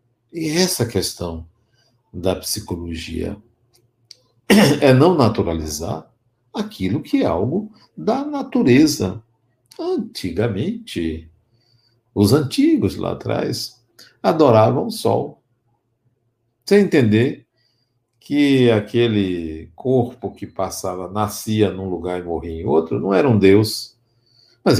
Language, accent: Portuguese, Brazilian